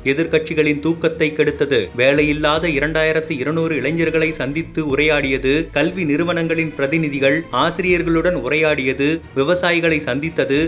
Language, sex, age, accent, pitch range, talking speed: Tamil, male, 30-49, native, 145-165 Hz, 85 wpm